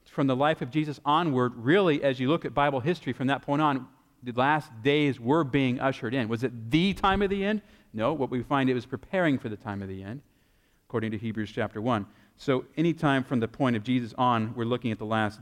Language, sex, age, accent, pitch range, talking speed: English, male, 40-59, American, 115-150 Hz, 245 wpm